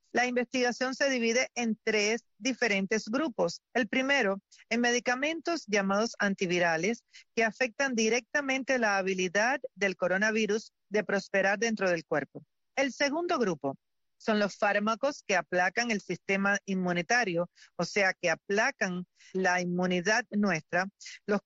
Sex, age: female, 40-59